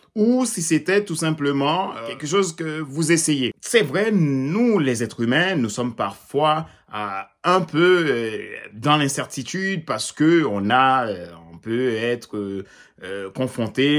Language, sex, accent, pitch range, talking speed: French, male, French, 110-170 Hz, 135 wpm